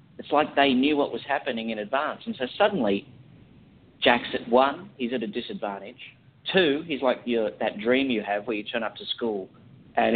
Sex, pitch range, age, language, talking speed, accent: male, 115-140 Hz, 40-59, English, 195 wpm, Australian